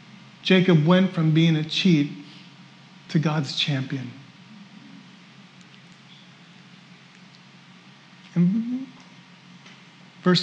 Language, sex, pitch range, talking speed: English, male, 170-200 Hz, 60 wpm